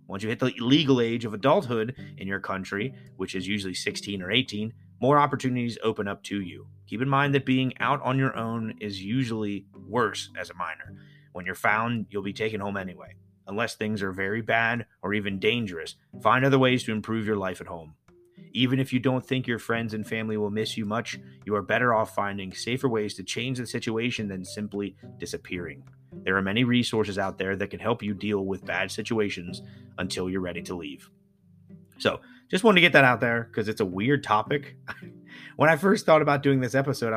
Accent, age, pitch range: American, 30-49, 100-135 Hz